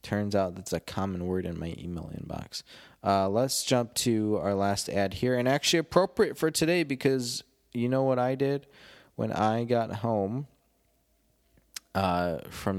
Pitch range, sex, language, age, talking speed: 105-135 Hz, male, English, 20-39, 165 wpm